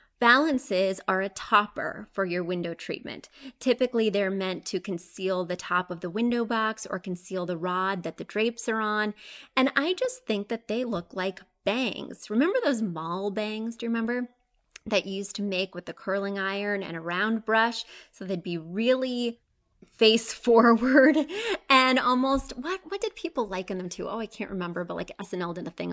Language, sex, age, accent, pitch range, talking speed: English, female, 20-39, American, 185-255 Hz, 190 wpm